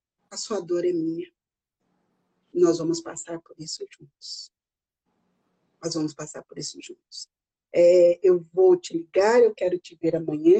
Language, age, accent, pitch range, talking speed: Portuguese, 50-69, Brazilian, 235-360 Hz, 155 wpm